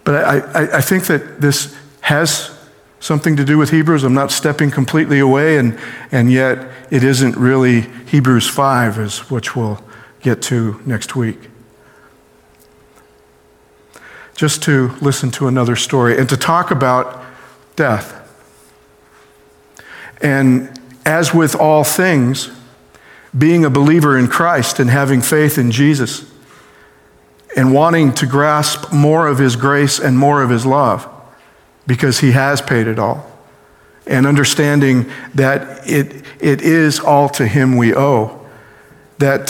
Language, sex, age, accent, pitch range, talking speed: English, male, 50-69, American, 120-145 Hz, 135 wpm